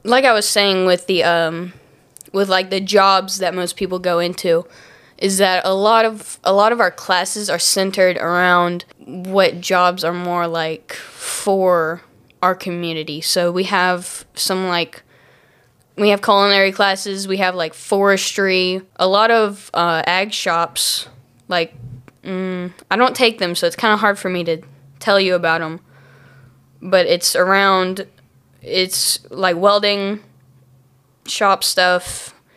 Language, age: English, 10-29